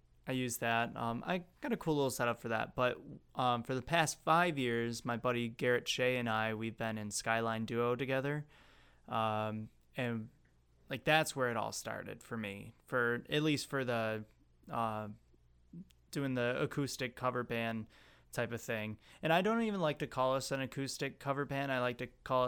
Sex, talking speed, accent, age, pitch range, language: male, 190 wpm, American, 20-39, 115-140 Hz, English